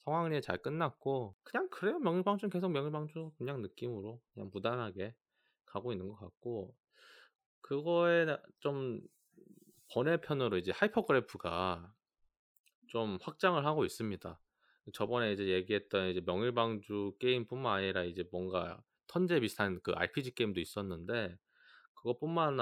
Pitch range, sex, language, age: 100-135 Hz, male, Korean, 20-39